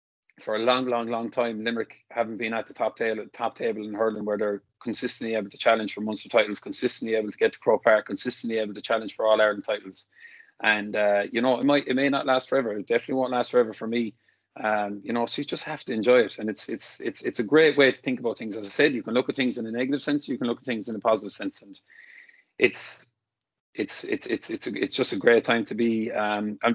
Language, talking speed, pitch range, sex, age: English, 265 wpm, 110-120 Hz, male, 30-49